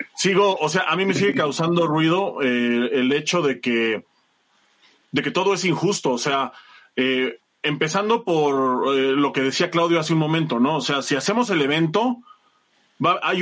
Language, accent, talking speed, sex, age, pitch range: Spanish, Mexican, 185 wpm, male, 30-49, 135-190 Hz